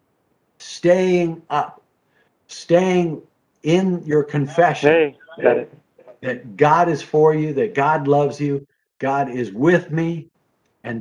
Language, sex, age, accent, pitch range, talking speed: English, male, 50-69, American, 140-180 Hz, 110 wpm